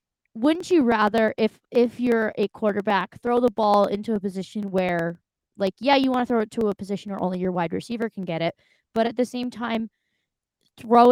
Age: 20-39